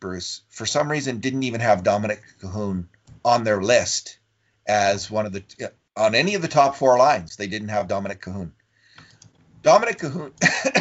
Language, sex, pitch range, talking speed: English, male, 100-130 Hz, 165 wpm